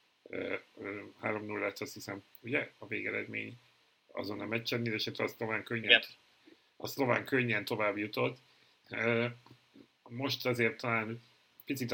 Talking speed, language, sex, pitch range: 100 wpm, Hungarian, male, 100-120 Hz